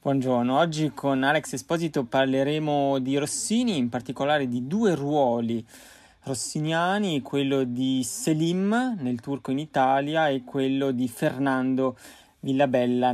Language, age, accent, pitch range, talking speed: Italian, 20-39, native, 125-155 Hz, 120 wpm